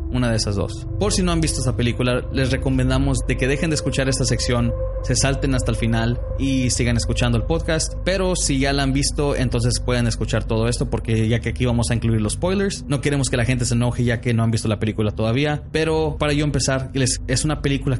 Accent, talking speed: Mexican, 240 wpm